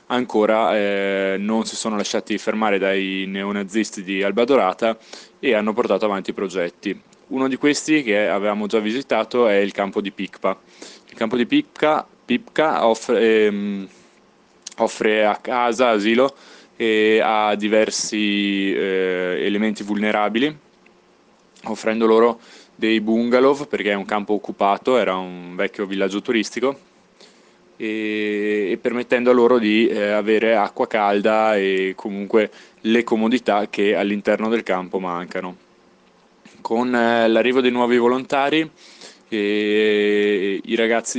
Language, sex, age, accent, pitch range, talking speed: Italian, male, 20-39, native, 100-115 Hz, 120 wpm